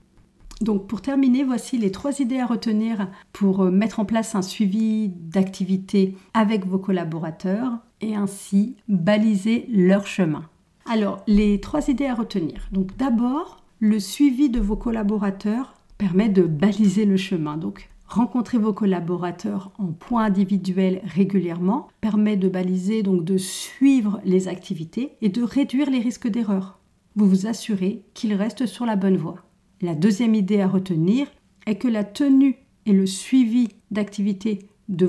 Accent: French